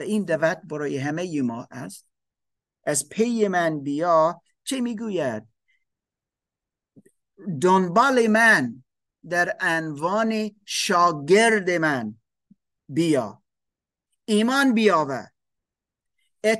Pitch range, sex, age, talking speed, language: 160-215 Hz, male, 50-69, 75 wpm, Persian